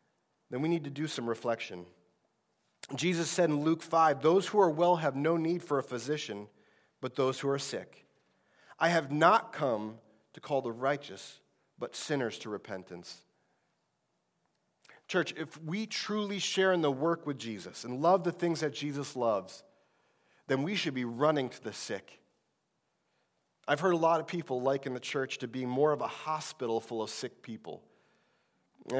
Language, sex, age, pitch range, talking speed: English, male, 30-49, 130-170 Hz, 175 wpm